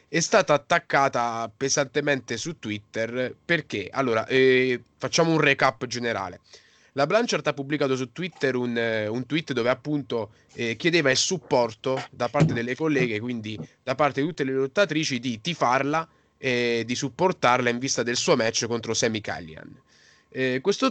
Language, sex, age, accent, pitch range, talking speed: Italian, male, 20-39, native, 115-150 Hz, 155 wpm